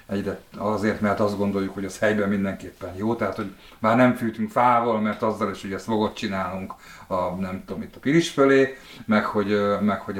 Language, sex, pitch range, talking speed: Hungarian, male, 95-115 Hz, 190 wpm